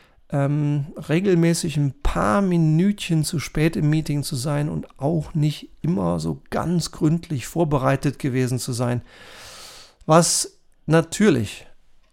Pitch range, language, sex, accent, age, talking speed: 135-160 Hz, German, male, German, 40-59, 120 wpm